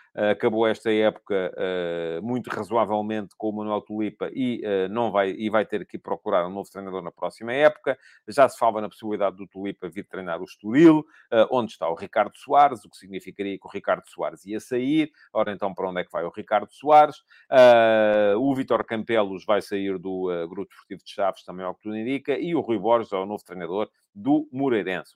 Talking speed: 200 wpm